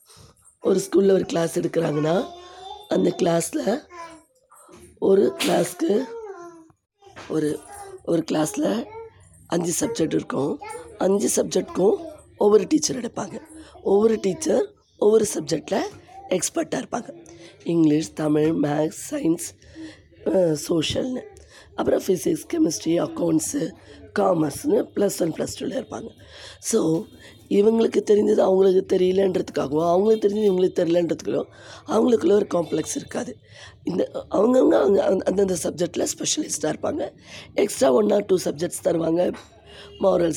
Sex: female